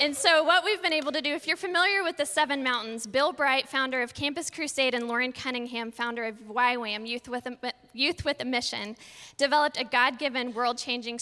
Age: 10-29